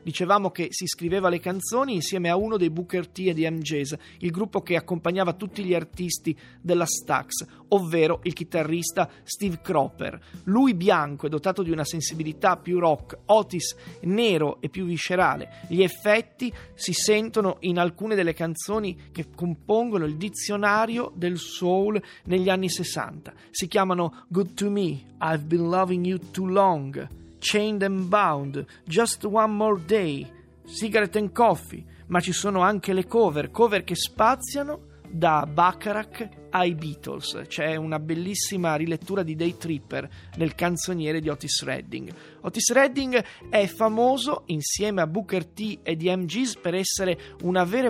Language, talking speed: Italian, 150 wpm